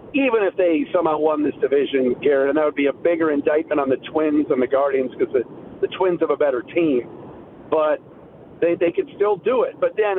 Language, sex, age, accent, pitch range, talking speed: English, male, 50-69, American, 155-200 Hz, 225 wpm